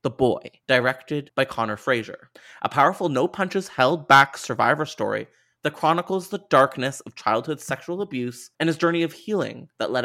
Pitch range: 120-155 Hz